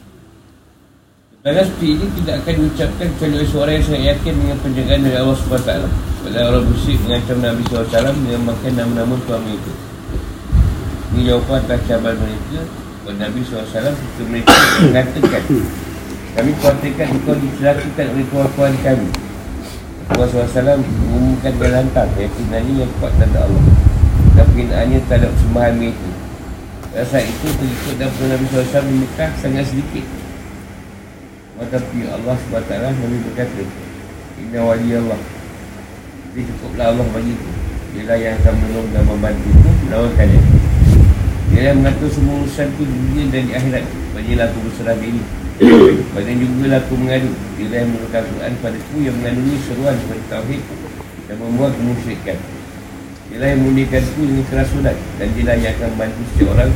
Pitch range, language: 105-130 Hz, Malay